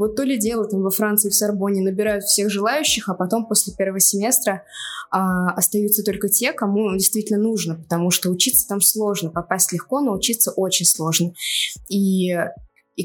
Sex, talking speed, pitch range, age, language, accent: female, 170 wpm, 185-230 Hz, 20-39, Russian, native